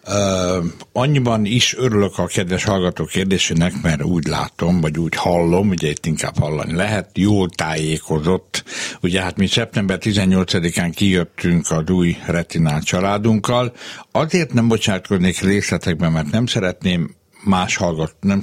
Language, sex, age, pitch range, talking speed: Hungarian, male, 60-79, 85-105 Hz, 135 wpm